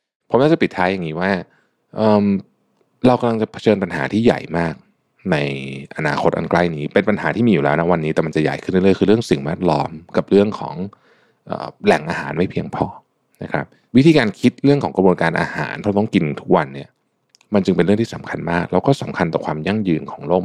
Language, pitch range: Thai, 80-105 Hz